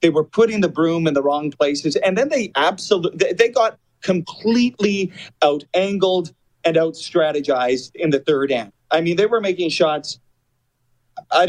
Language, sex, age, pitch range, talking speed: English, male, 30-49, 135-170 Hz, 165 wpm